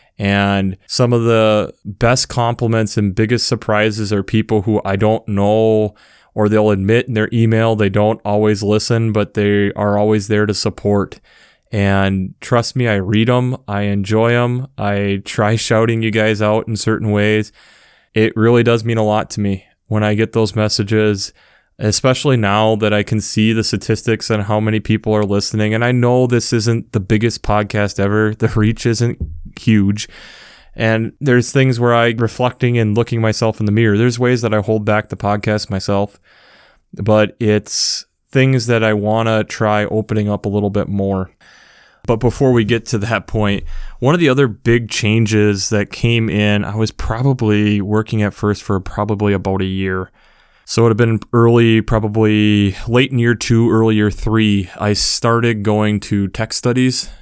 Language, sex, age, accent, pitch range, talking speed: English, male, 20-39, American, 105-115 Hz, 180 wpm